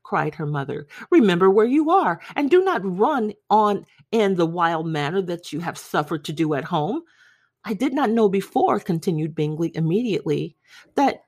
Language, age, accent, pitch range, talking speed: English, 50-69, American, 175-255 Hz, 175 wpm